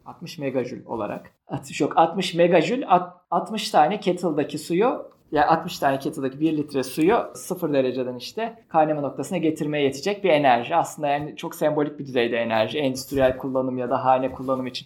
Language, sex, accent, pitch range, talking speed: Turkish, male, native, 140-180 Hz, 175 wpm